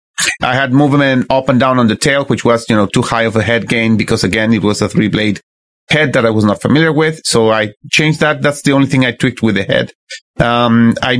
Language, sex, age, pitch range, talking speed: English, male, 30-49, 115-150 Hz, 255 wpm